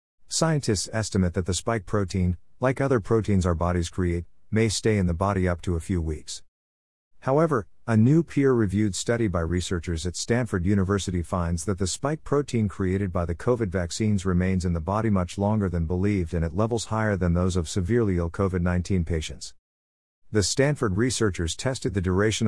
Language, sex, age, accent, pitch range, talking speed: English, male, 50-69, American, 85-110 Hz, 180 wpm